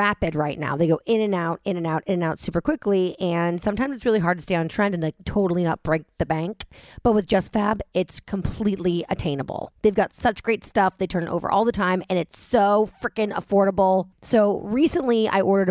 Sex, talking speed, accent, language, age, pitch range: female, 230 wpm, American, English, 30-49, 175-220 Hz